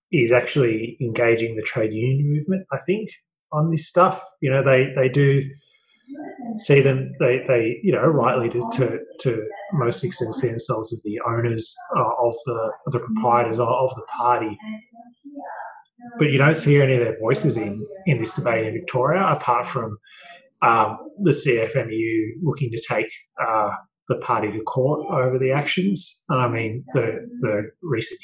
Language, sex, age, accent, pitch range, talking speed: English, male, 20-39, Australian, 115-170 Hz, 170 wpm